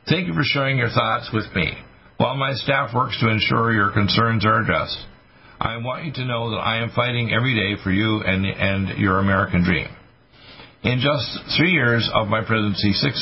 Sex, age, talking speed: male, 50-69, 200 wpm